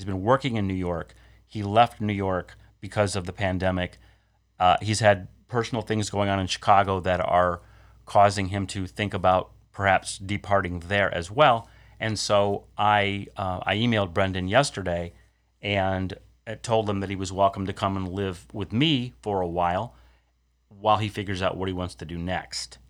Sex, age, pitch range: male, 30-49, 95-110 Hz